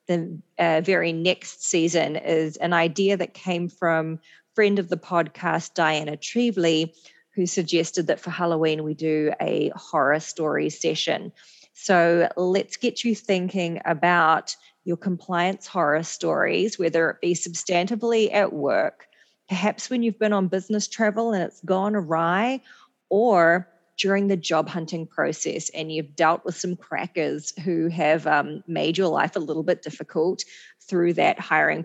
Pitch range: 165-195 Hz